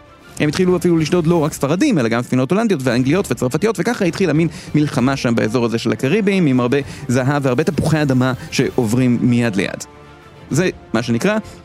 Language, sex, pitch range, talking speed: Hebrew, male, 110-145 Hz, 175 wpm